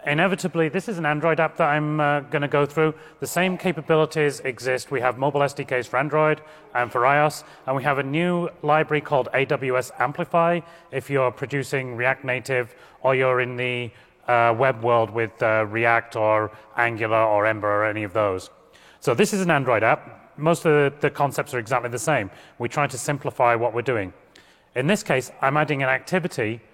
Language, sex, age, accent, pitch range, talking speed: English, male, 30-49, British, 120-150 Hz, 195 wpm